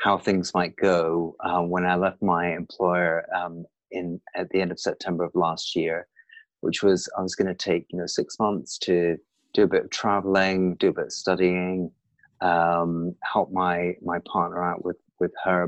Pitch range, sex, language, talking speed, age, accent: 90-100 Hz, male, English, 195 wpm, 30-49, British